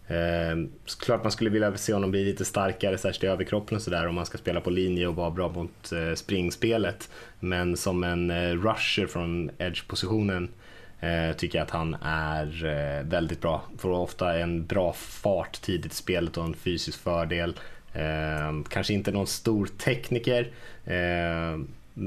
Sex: male